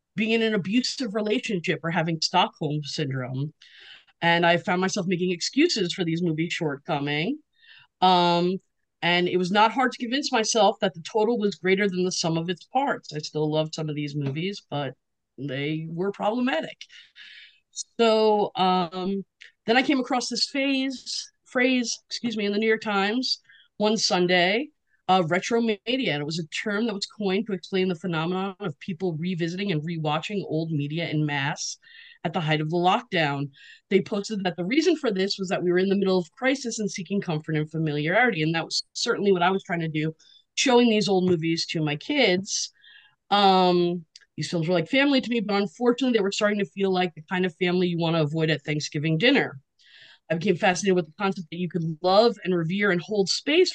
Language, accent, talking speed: English, American, 200 wpm